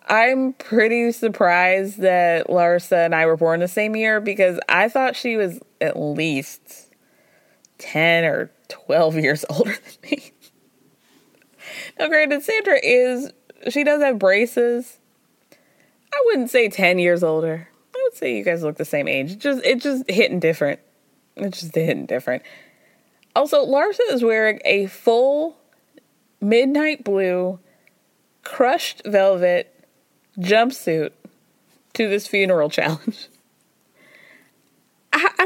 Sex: female